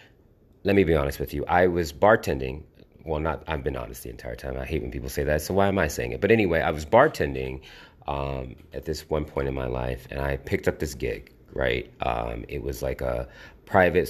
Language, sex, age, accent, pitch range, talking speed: English, male, 30-49, American, 70-95 Hz, 235 wpm